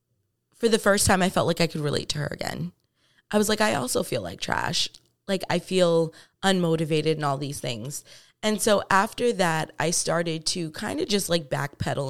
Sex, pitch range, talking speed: female, 155-195 Hz, 205 wpm